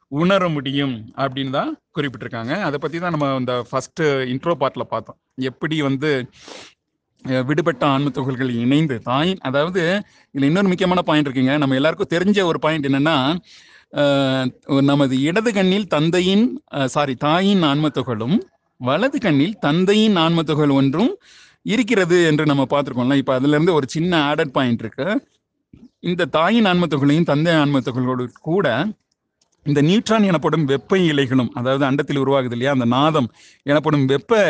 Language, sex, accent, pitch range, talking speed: Tamil, male, native, 135-180 Hz, 130 wpm